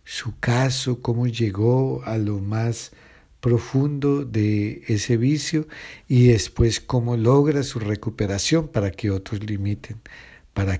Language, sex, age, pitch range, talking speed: Spanish, male, 50-69, 95-125 Hz, 120 wpm